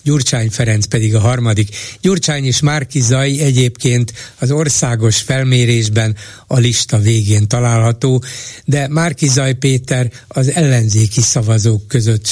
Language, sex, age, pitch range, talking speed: Hungarian, male, 60-79, 115-135 Hz, 120 wpm